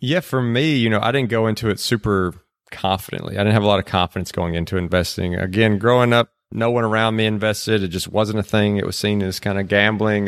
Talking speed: 245 wpm